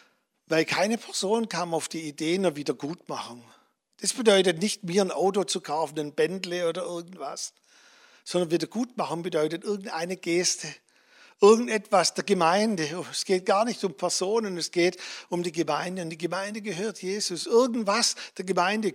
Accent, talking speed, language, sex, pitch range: German, 150 wpm, German, male, 170-210 Hz